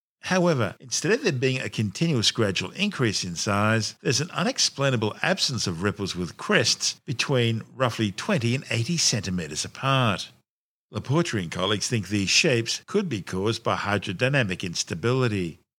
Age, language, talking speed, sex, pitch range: 50-69, English, 145 wpm, male, 95-130 Hz